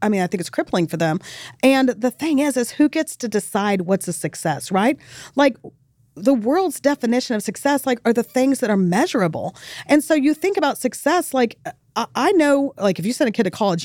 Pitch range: 195-260 Hz